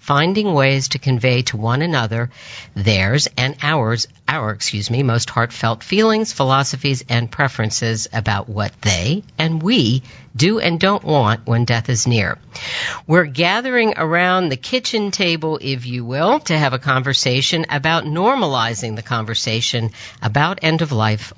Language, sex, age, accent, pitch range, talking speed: English, female, 50-69, American, 120-160 Hz, 150 wpm